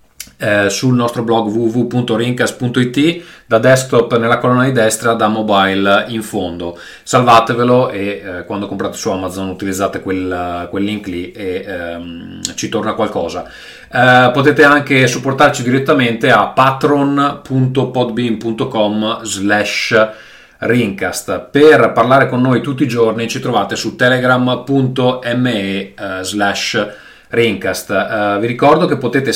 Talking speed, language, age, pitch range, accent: 120 wpm, Italian, 30-49, 105-135 Hz, native